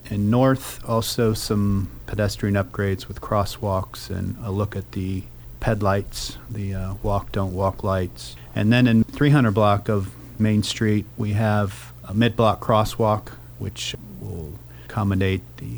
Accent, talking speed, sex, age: American, 145 wpm, male, 40-59